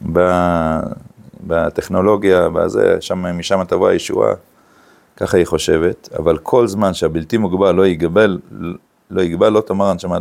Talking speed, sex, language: 125 wpm, male, Hebrew